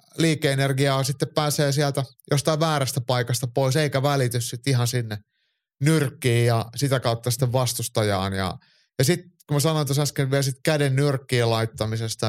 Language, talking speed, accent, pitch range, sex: Finnish, 150 wpm, native, 115-145 Hz, male